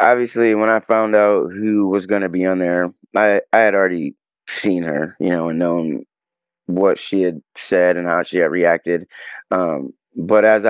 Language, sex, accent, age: English, male, American, 20-39